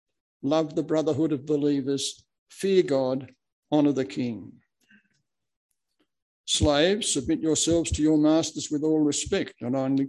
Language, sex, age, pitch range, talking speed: English, male, 60-79, 130-160 Hz, 125 wpm